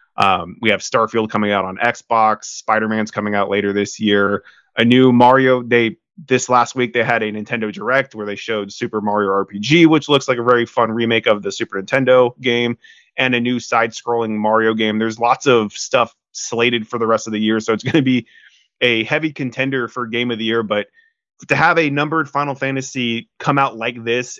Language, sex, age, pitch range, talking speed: English, male, 20-39, 105-135 Hz, 210 wpm